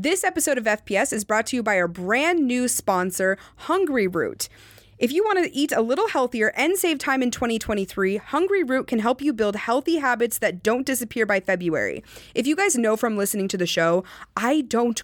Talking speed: 205 wpm